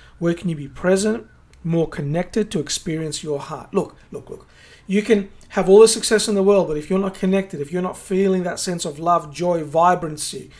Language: English